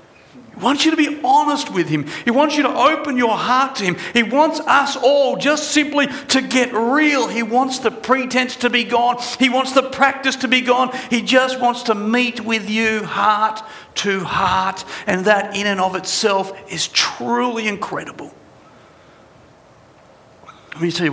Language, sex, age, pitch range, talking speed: English, male, 50-69, 140-230 Hz, 180 wpm